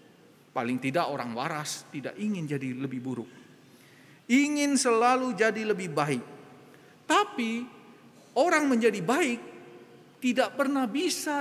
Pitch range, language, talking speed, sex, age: 155-235 Hz, Indonesian, 110 wpm, male, 40-59